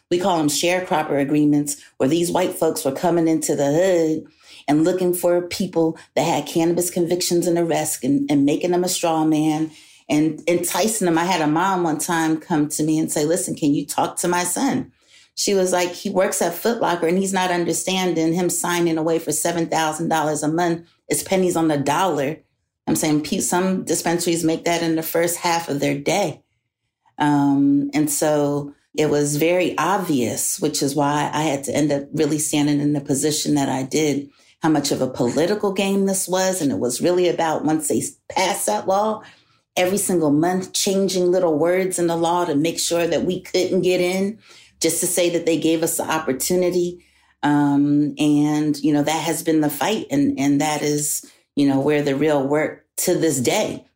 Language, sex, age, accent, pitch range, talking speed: English, female, 40-59, American, 150-175 Hz, 200 wpm